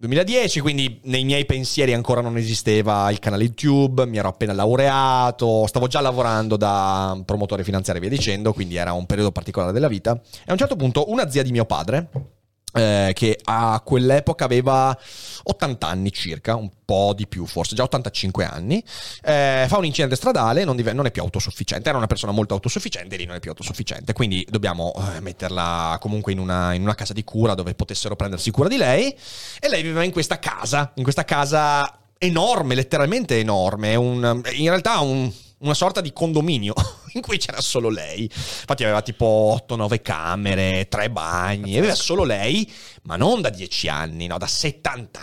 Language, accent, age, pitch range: Italian, native, 30-49, 100-135 Hz